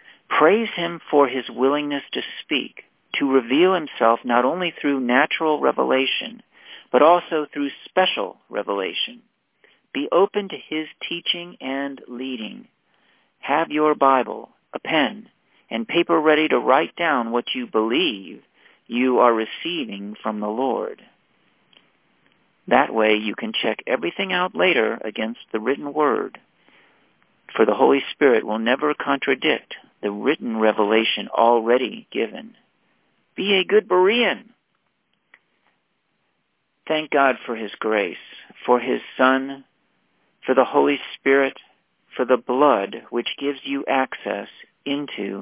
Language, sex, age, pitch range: English, male, 50-69, 120-160 Hz